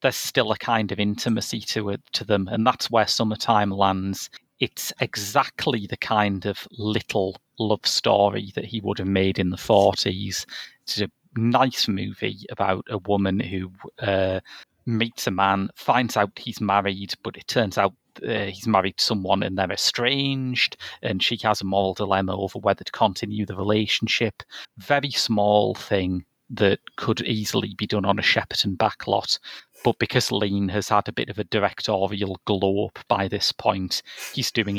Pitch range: 100-115 Hz